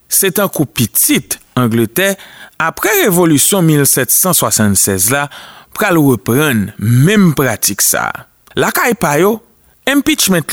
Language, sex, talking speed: French, male, 110 wpm